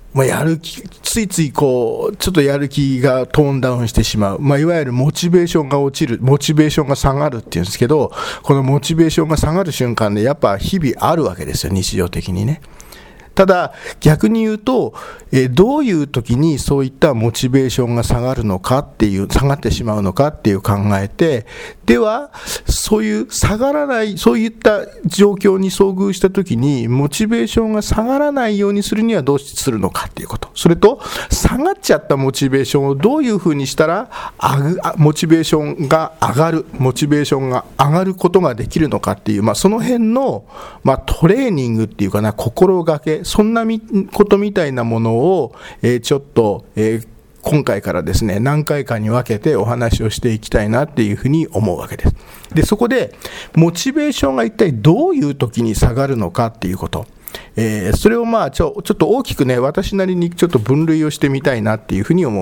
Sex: male